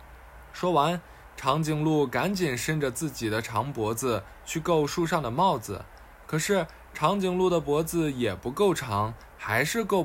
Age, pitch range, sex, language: 20-39, 120-190 Hz, male, Chinese